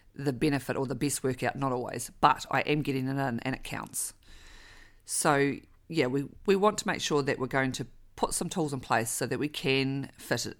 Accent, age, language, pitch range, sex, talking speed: Australian, 40-59, English, 120-150 Hz, female, 225 wpm